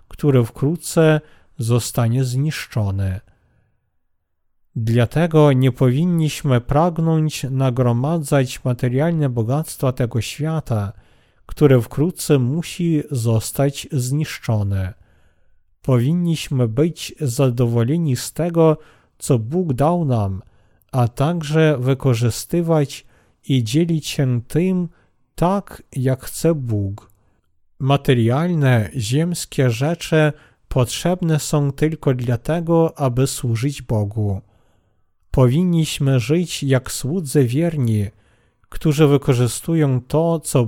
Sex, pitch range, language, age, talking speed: male, 115-155 Hz, Polish, 40-59, 85 wpm